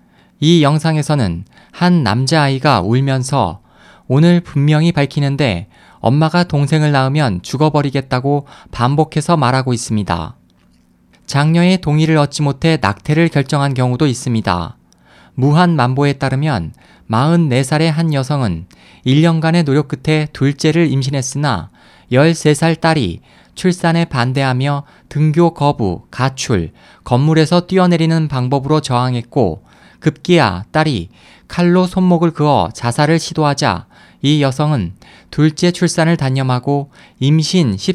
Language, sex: Korean, male